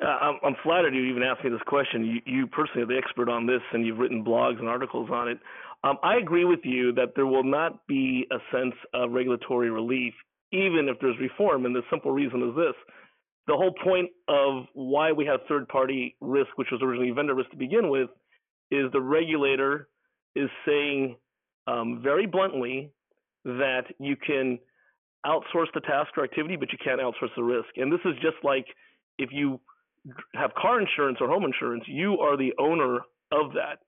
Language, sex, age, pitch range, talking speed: English, male, 40-59, 125-155 Hz, 195 wpm